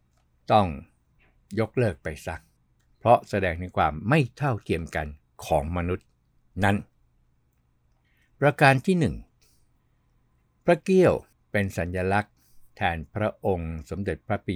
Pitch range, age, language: 75-105 Hz, 60-79, Thai